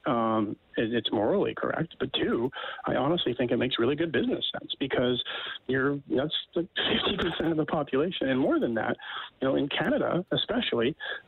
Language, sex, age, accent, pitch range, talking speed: English, male, 40-59, American, 115-150 Hz, 180 wpm